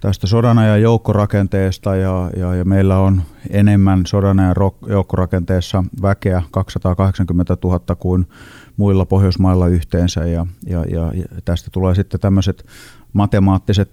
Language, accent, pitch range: Finnish, native, 90-105 Hz